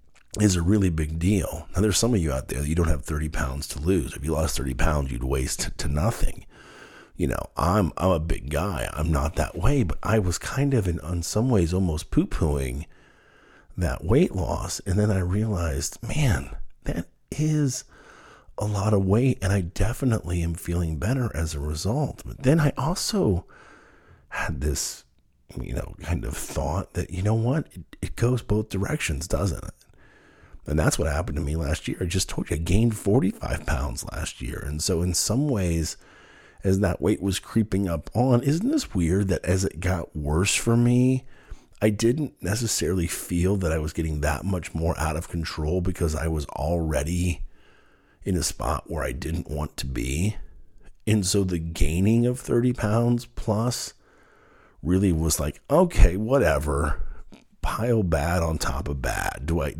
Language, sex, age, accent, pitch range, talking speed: English, male, 50-69, American, 80-105 Hz, 185 wpm